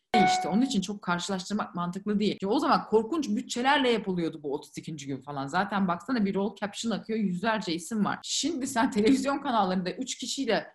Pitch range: 165-220 Hz